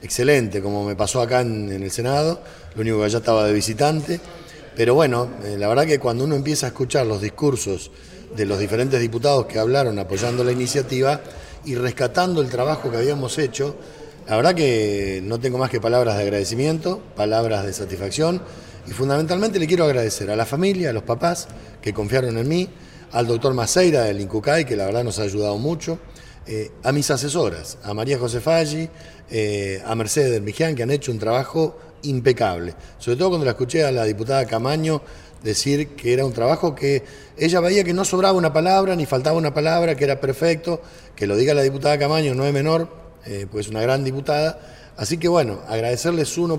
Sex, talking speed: male, 195 wpm